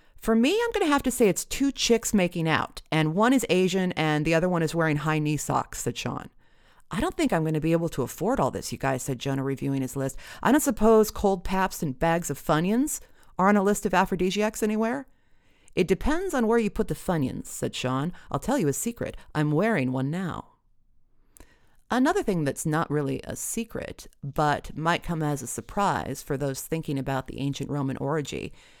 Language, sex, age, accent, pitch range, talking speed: English, female, 40-59, American, 140-200 Hz, 215 wpm